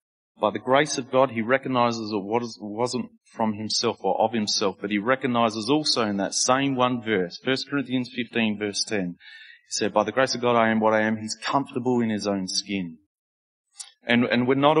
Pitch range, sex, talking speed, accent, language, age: 115-155 Hz, male, 205 wpm, Australian, English, 30-49